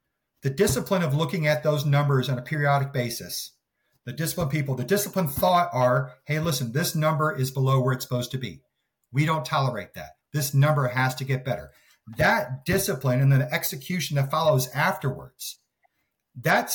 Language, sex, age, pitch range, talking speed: English, male, 40-59, 135-175 Hz, 175 wpm